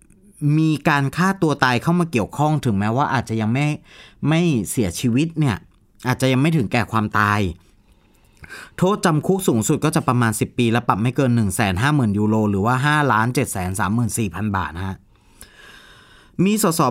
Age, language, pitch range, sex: 30-49, Thai, 110-155 Hz, male